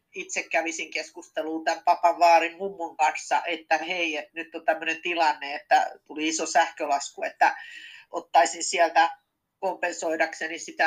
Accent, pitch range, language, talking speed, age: native, 160-220 Hz, Finnish, 135 wpm, 40-59